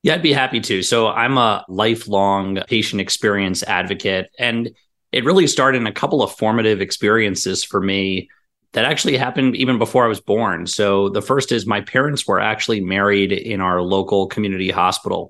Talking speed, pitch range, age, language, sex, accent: 180 wpm, 95-110 Hz, 30-49, English, male, American